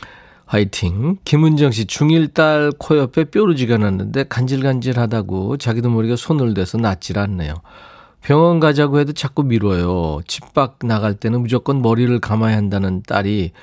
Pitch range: 100-150 Hz